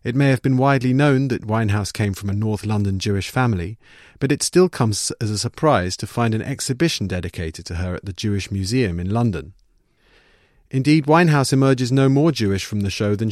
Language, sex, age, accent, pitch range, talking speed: English, male, 40-59, British, 100-130 Hz, 205 wpm